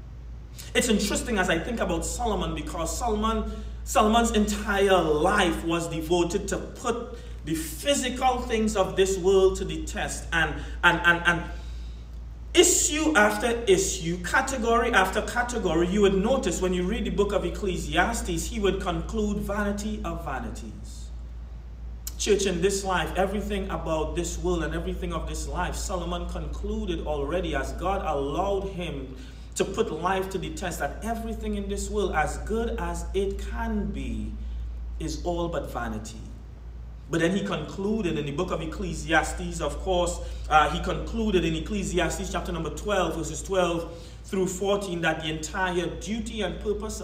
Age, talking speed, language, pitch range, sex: 30-49, 155 wpm, English, 160-205 Hz, male